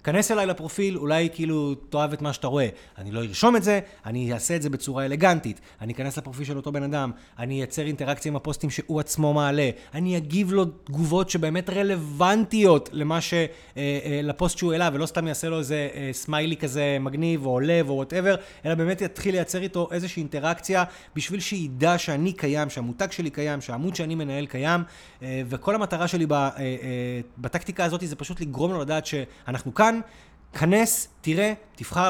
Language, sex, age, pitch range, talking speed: Hebrew, male, 30-49, 135-175 Hz, 140 wpm